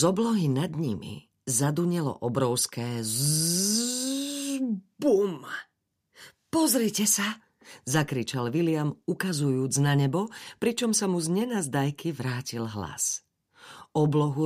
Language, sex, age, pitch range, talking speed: Slovak, female, 40-59, 130-195 Hz, 95 wpm